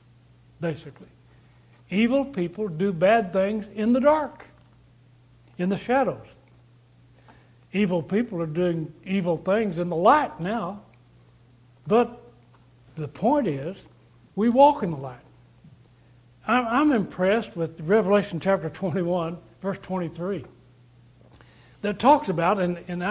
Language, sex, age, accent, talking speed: English, male, 60-79, American, 115 wpm